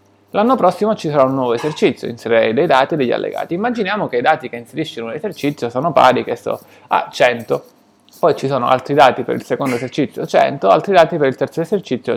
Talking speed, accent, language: 215 wpm, native, Italian